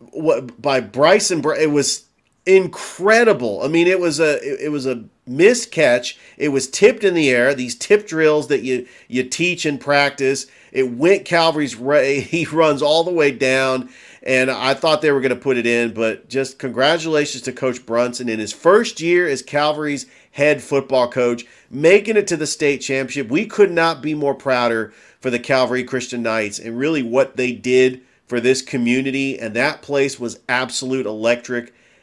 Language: English